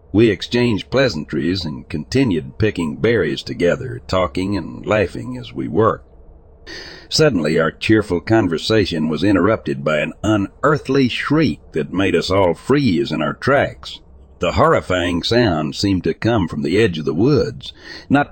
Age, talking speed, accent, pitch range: 60-79, 145 wpm, American, 80-120 Hz